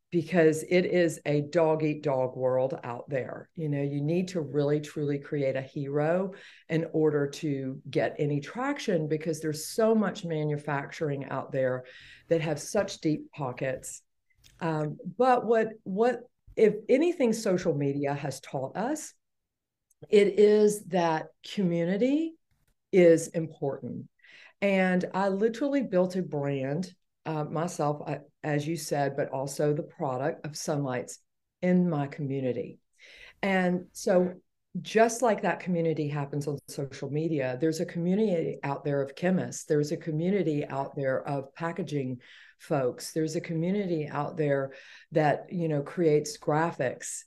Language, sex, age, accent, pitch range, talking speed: English, female, 50-69, American, 145-180 Hz, 140 wpm